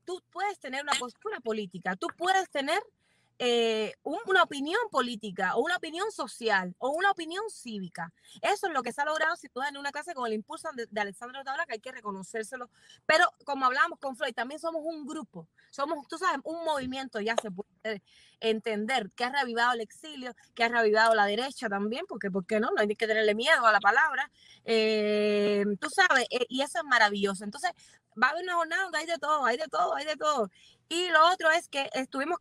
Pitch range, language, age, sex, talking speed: 220-295 Hz, English, 20-39, female, 210 wpm